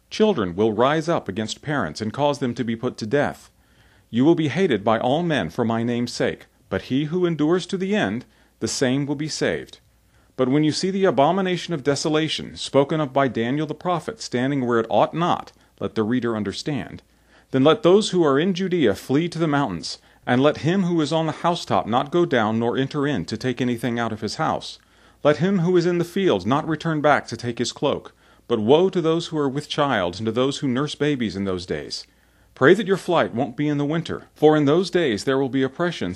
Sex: male